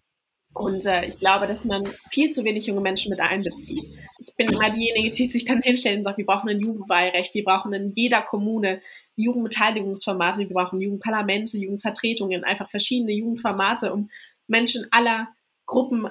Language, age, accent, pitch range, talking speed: German, 20-39, German, 195-230 Hz, 165 wpm